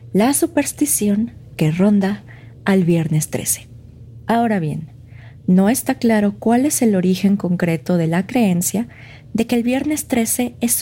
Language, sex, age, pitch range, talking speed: Spanish, female, 40-59, 155-220 Hz, 145 wpm